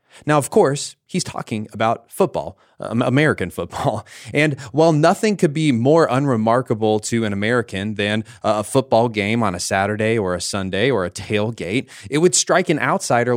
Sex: male